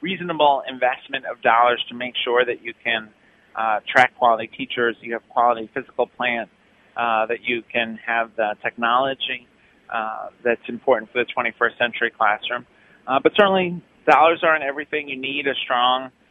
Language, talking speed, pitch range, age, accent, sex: English, 160 wpm, 115-140 Hz, 30-49, American, male